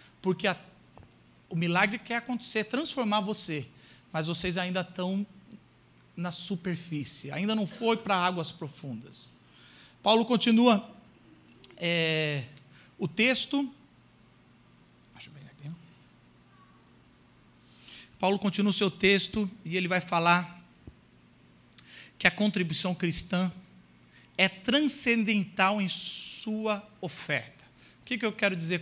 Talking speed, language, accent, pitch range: 95 wpm, Portuguese, Brazilian, 170-230 Hz